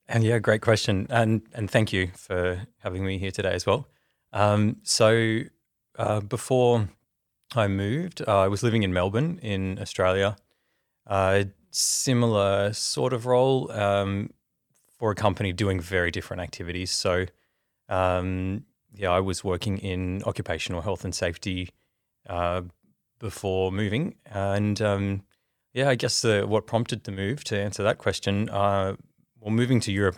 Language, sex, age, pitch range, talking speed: English, male, 20-39, 95-110 Hz, 155 wpm